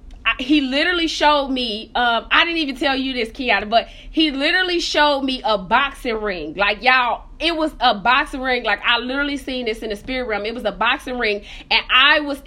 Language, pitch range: English, 255-305 Hz